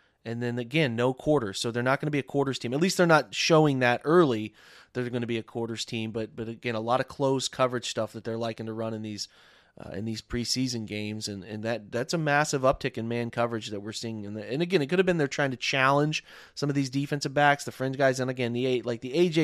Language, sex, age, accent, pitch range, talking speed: English, male, 30-49, American, 115-145 Hz, 280 wpm